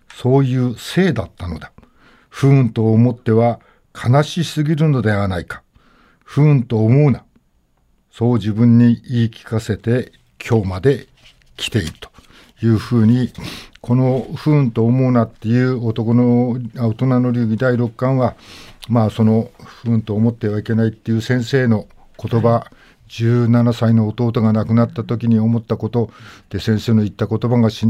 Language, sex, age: Japanese, male, 50-69